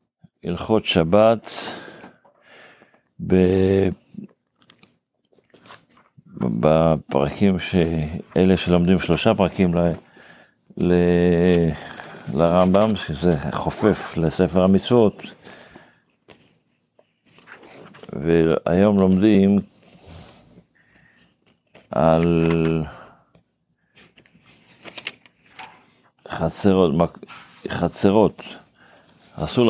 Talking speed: 35 wpm